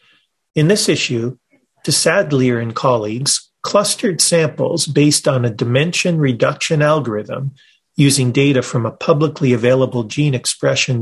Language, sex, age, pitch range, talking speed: English, male, 40-59, 130-165 Hz, 125 wpm